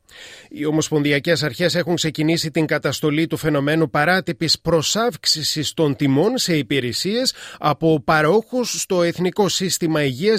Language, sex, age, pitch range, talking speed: Greek, male, 30-49, 140-175 Hz, 120 wpm